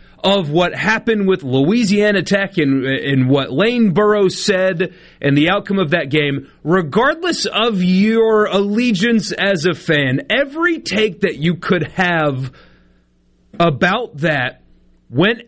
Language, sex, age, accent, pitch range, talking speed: English, male, 30-49, American, 130-195 Hz, 130 wpm